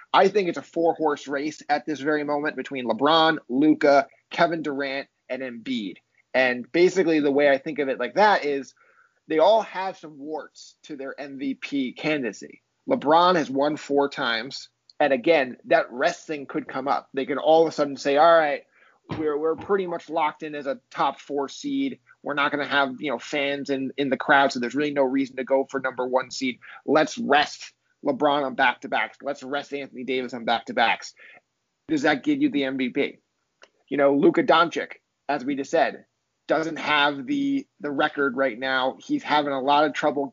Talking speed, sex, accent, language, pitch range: 190 wpm, male, American, English, 135-165 Hz